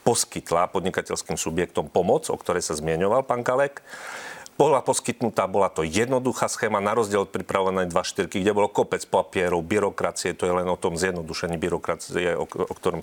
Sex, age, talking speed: male, 40-59, 165 wpm